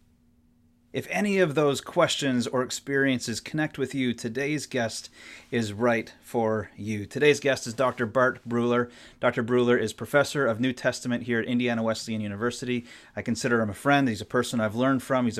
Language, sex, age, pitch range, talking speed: English, male, 30-49, 110-135 Hz, 180 wpm